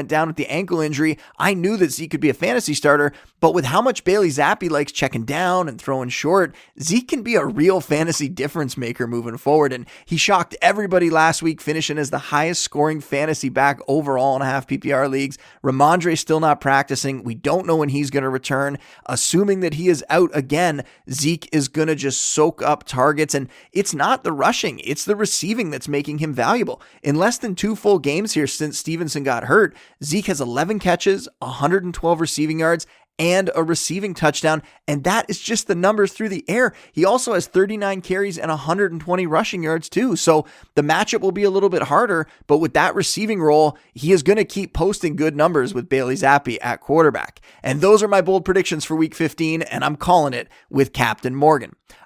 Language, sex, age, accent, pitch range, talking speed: English, male, 30-49, American, 145-185 Hz, 205 wpm